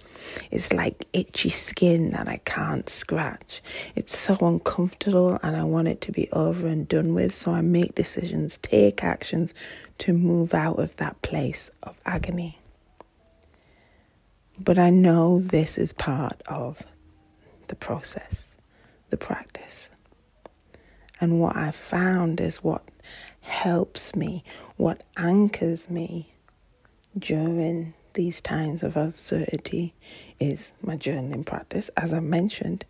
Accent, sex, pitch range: British, female, 130-175 Hz